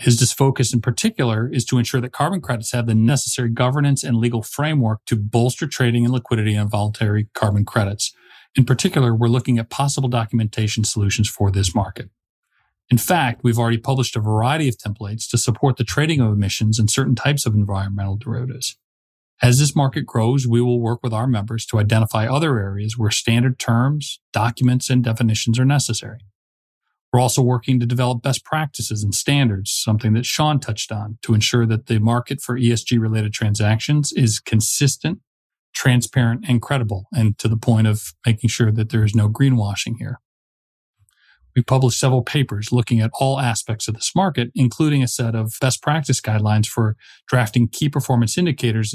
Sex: male